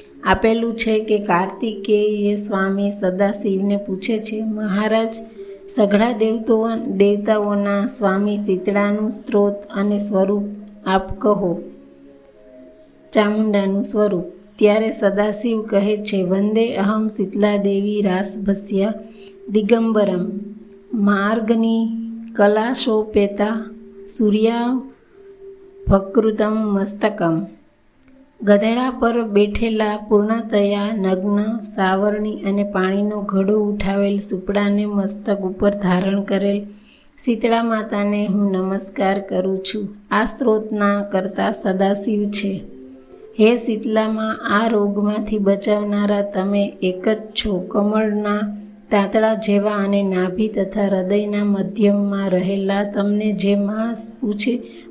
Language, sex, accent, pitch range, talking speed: Gujarati, female, native, 200-220 Hz, 85 wpm